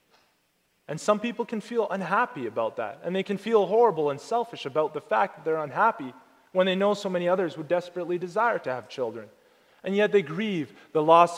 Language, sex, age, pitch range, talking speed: English, male, 30-49, 165-230 Hz, 205 wpm